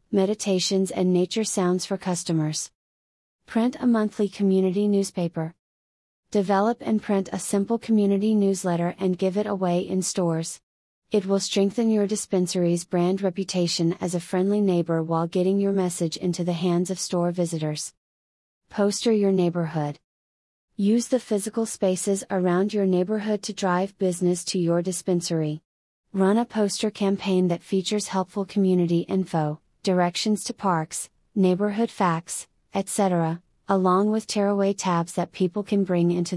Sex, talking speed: female, 140 wpm